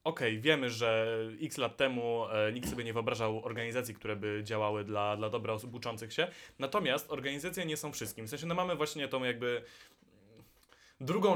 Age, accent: 20-39, native